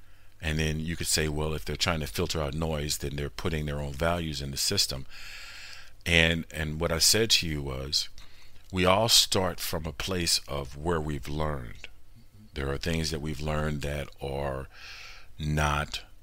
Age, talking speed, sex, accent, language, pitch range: 50-69, 180 wpm, male, American, English, 75-100 Hz